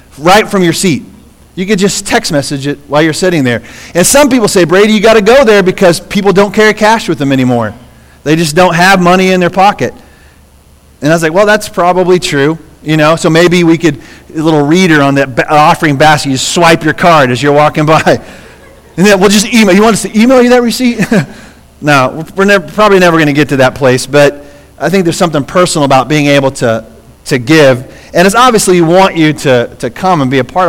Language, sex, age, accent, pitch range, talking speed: English, male, 40-59, American, 140-200 Hz, 230 wpm